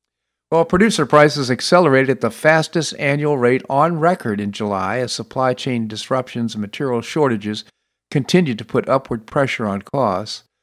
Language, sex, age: English, male, 50-69